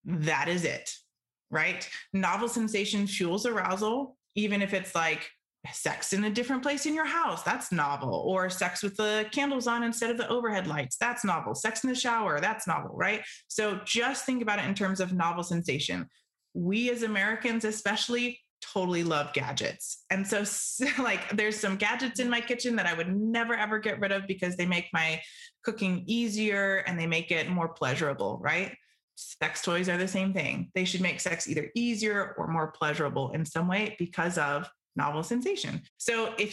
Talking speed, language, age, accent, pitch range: 185 wpm, English, 20-39, American, 170-215 Hz